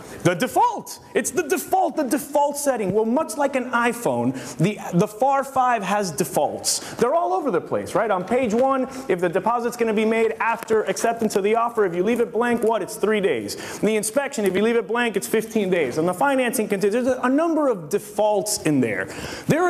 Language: English